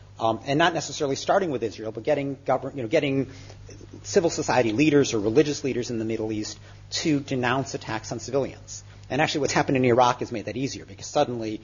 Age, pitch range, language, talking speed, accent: 40-59, 105-140 Hz, English, 205 wpm, American